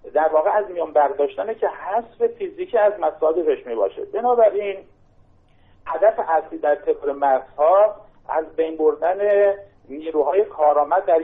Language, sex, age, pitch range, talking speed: Persian, male, 50-69, 155-225 Hz, 130 wpm